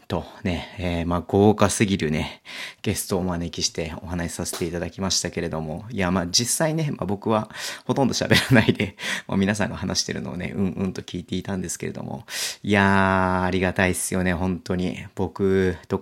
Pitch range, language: 90-95 Hz, Japanese